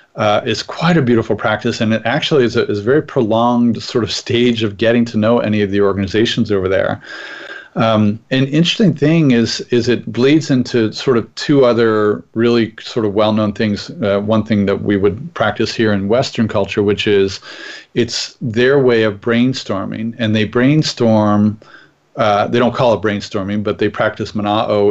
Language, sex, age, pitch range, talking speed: English, male, 40-59, 105-120 Hz, 180 wpm